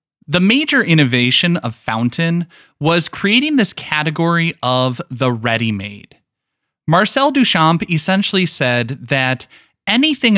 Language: English